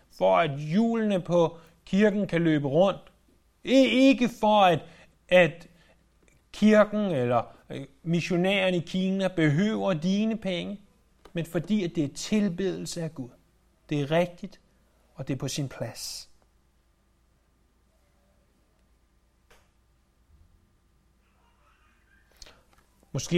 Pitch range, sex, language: 145-200 Hz, male, Danish